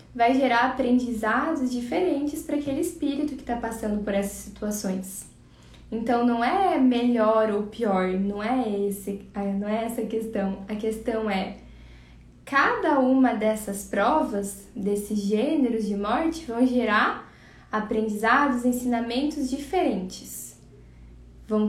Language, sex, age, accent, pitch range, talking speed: Portuguese, female, 10-29, Brazilian, 210-255 Hz, 115 wpm